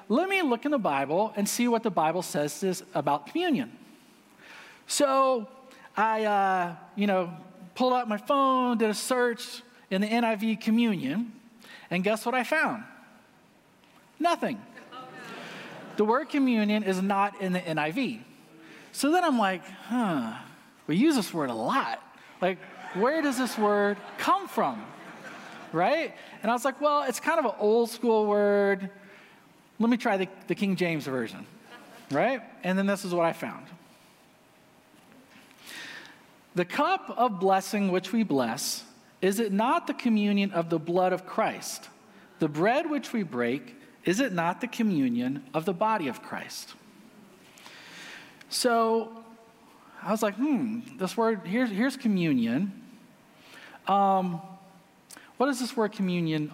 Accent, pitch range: American, 190-250 Hz